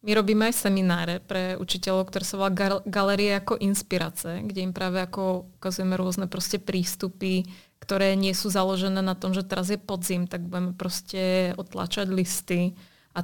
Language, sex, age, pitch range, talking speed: Czech, female, 20-39, 185-210 Hz, 150 wpm